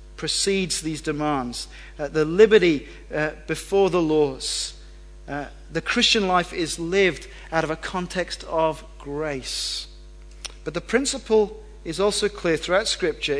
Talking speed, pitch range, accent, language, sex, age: 135 wpm, 145-210 Hz, British, English, male, 40-59